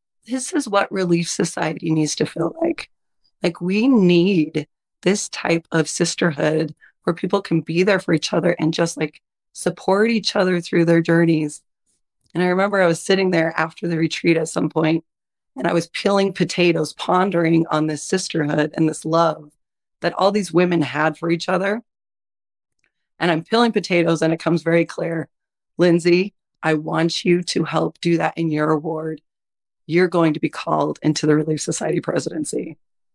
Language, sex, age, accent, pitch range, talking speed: English, female, 30-49, American, 155-175 Hz, 175 wpm